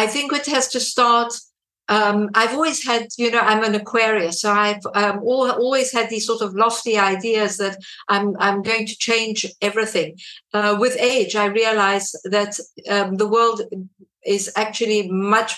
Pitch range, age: 200-230 Hz, 50-69